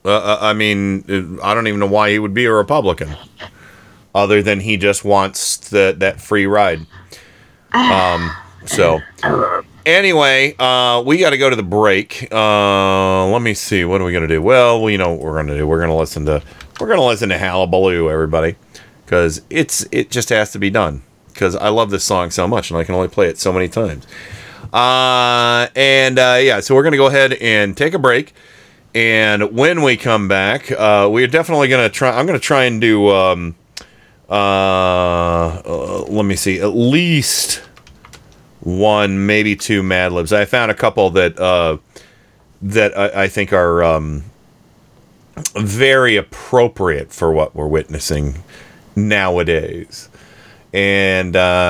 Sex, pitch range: male, 90-115 Hz